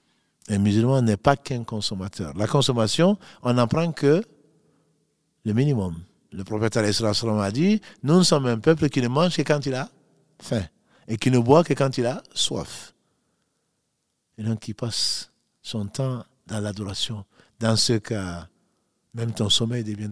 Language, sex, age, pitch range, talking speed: French, male, 50-69, 105-140 Hz, 160 wpm